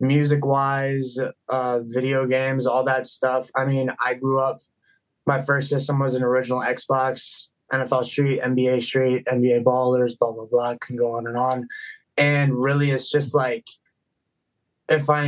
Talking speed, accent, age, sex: 160 wpm, American, 20-39, male